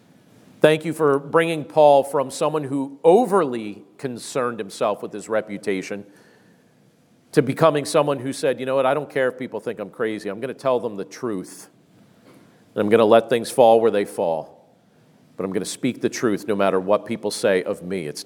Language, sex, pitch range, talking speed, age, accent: English, male, 110-140 Hz, 205 wpm, 40-59, American